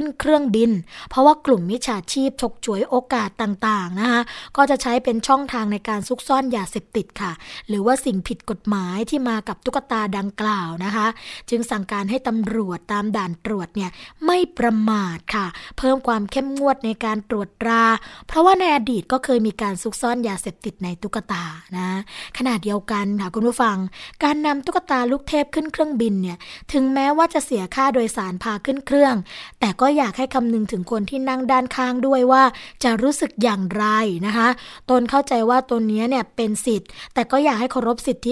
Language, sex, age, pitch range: Thai, female, 20-39, 215-265 Hz